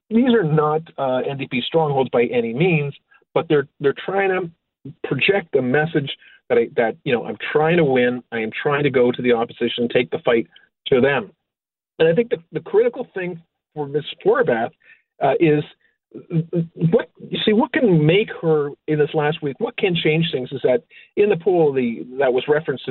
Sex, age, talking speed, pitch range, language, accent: male, 40-59, 195 wpm, 135-195 Hz, English, American